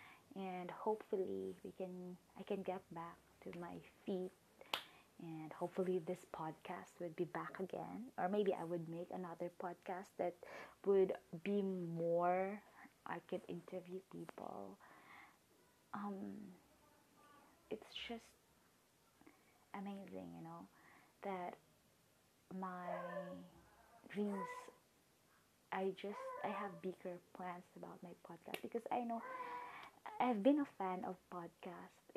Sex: female